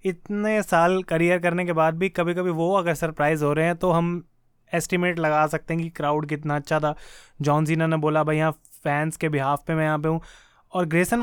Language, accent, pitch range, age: Hindi, native, 155-185 Hz, 20-39